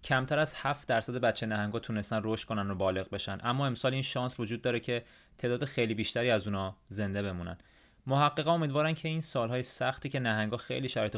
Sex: male